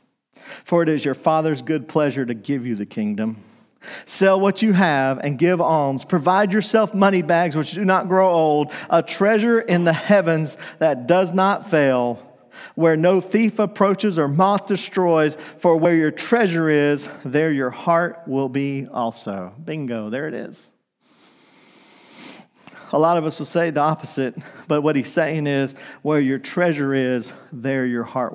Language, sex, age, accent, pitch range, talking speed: English, male, 40-59, American, 140-175 Hz, 165 wpm